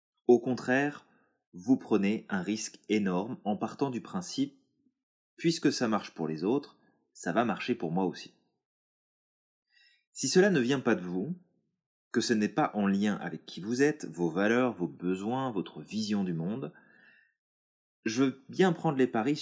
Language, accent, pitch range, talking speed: French, French, 95-140 Hz, 165 wpm